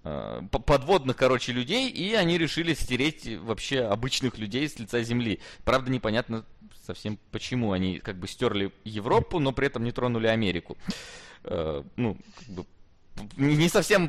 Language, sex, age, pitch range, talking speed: Russian, male, 20-39, 105-130 Hz, 140 wpm